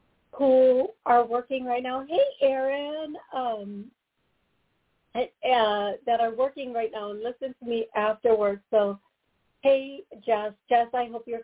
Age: 40-59